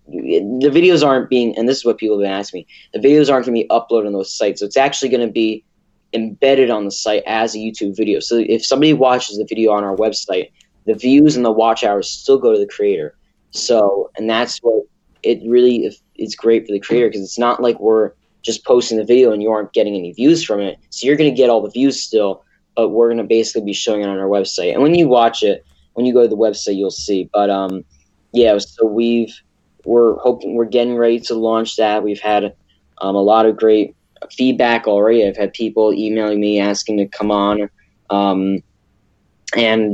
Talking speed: 230 wpm